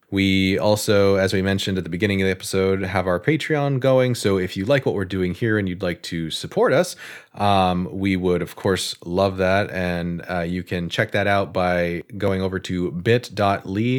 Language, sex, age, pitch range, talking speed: English, male, 30-49, 90-115 Hz, 205 wpm